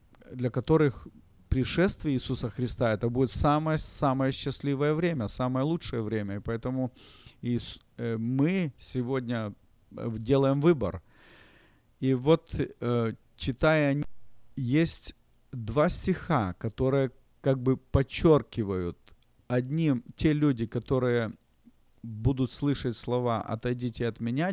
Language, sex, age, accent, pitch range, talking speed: Russian, male, 40-59, native, 115-140 Hz, 100 wpm